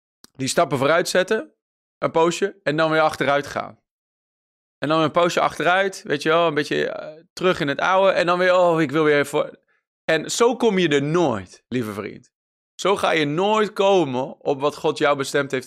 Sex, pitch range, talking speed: male, 145-190 Hz, 200 wpm